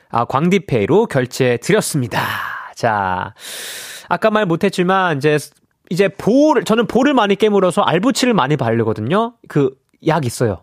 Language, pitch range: Korean, 135-215 Hz